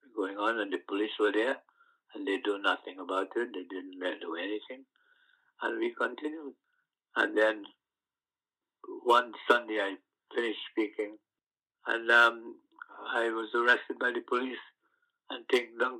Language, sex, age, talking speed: English, male, 60-79, 145 wpm